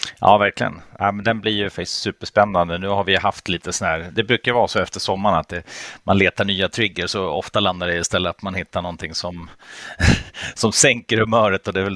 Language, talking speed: Swedish, 225 wpm